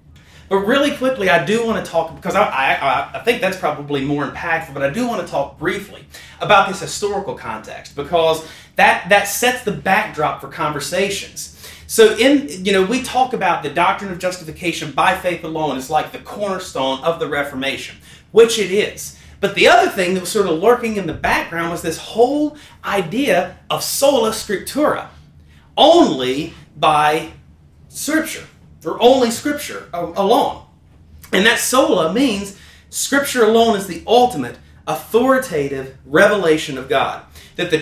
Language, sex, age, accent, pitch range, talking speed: English, male, 30-49, American, 160-230 Hz, 160 wpm